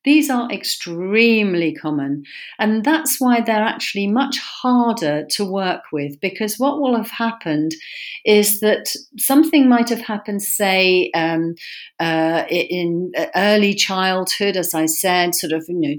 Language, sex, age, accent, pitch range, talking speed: English, female, 40-59, British, 170-220 Hz, 145 wpm